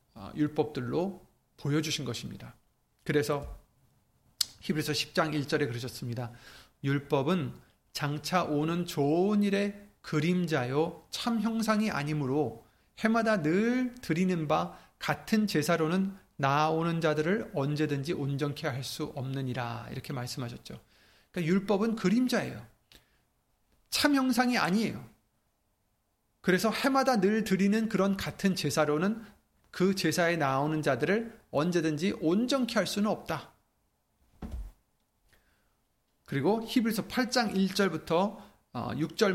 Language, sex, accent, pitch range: Korean, male, native, 145-205 Hz